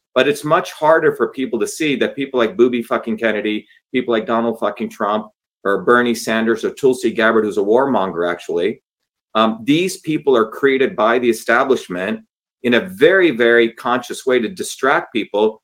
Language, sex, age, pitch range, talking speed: English, male, 40-59, 115-140 Hz, 175 wpm